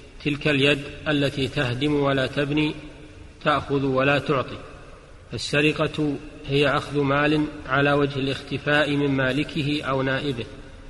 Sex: male